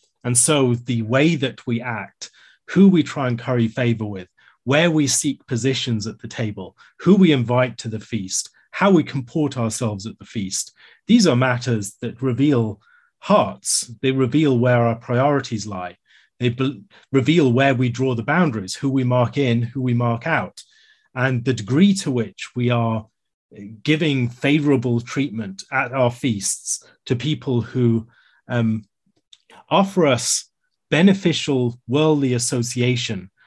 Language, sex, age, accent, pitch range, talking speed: English, male, 30-49, British, 115-145 Hz, 150 wpm